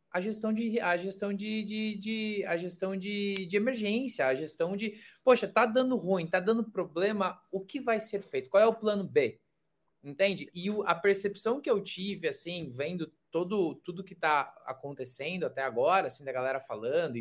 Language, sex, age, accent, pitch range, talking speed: Portuguese, male, 20-39, Brazilian, 135-205 Hz, 190 wpm